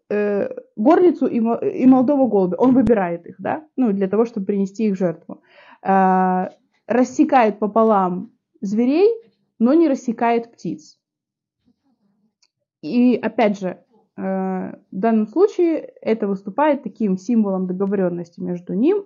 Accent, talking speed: native, 115 wpm